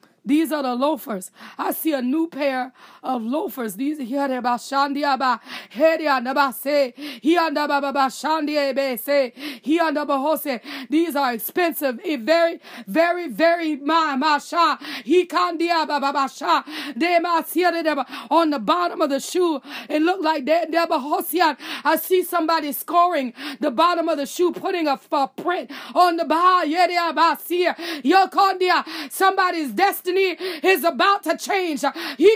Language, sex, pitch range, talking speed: English, female, 300-410 Hz, 95 wpm